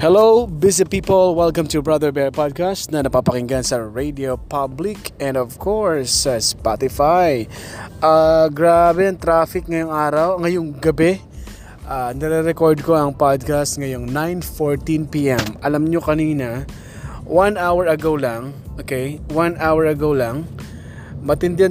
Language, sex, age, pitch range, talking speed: Filipino, male, 20-39, 130-160 Hz, 125 wpm